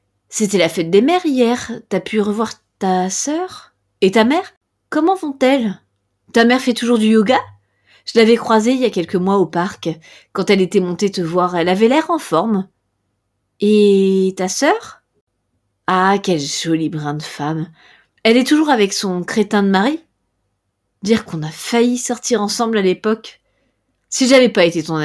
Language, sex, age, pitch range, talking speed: French, female, 30-49, 160-230 Hz, 175 wpm